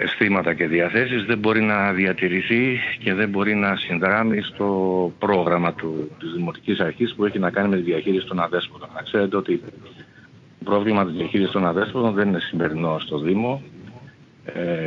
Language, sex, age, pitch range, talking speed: Greek, male, 50-69, 90-120 Hz, 170 wpm